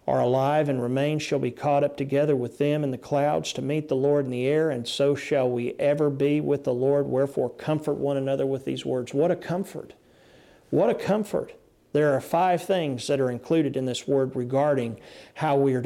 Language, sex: English, male